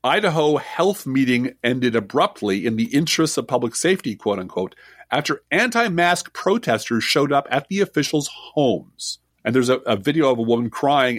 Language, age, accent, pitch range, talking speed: English, 40-59, American, 110-165 Hz, 165 wpm